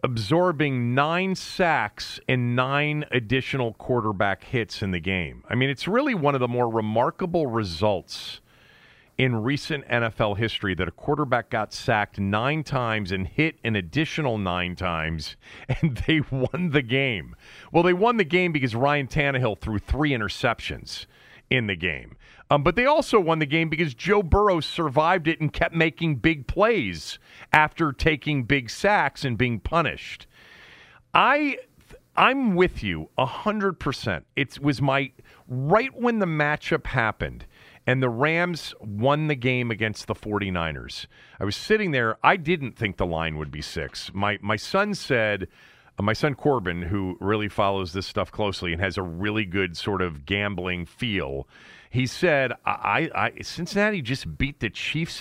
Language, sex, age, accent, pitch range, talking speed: English, male, 40-59, American, 100-150 Hz, 165 wpm